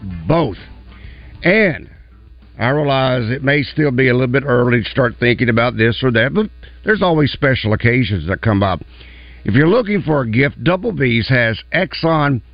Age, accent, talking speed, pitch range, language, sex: 60-79, American, 175 wpm, 90-145 Hz, English, male